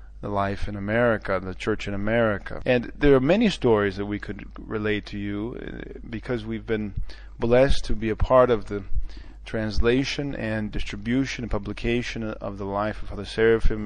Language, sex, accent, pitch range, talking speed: English, male, American, 100-115 Hz, 175 wpm